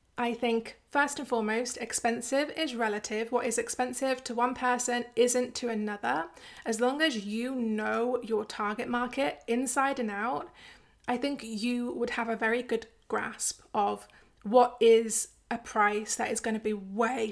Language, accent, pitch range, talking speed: English, British, 220-250 Hz, 165 wpm